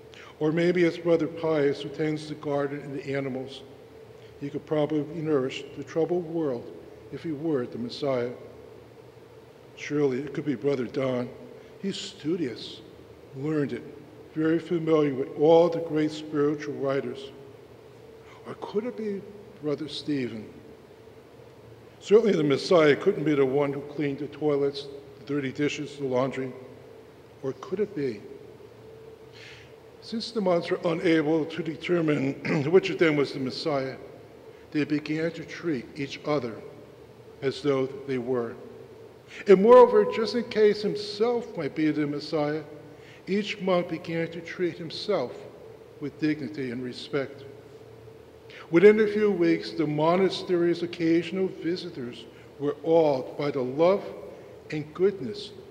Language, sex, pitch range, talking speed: English, male, 140-180 Hz, 135 wpm